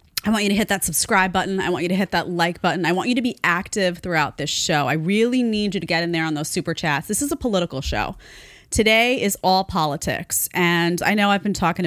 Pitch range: 165-215 Hz